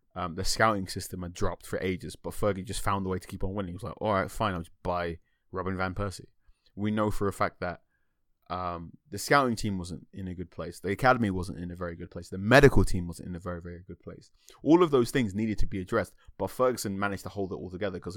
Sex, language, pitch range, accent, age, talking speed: male, English, 90-110 Hz, British, 20-39, 265 wpm